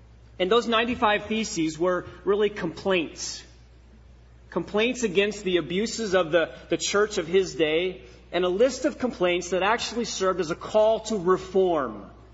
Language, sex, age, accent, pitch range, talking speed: English, male, 30-49, American, 150-205 Hz, 150 wpm